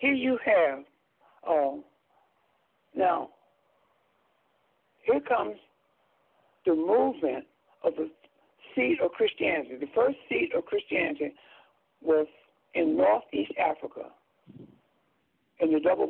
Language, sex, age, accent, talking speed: English, male, 60-79, American, 95 wpm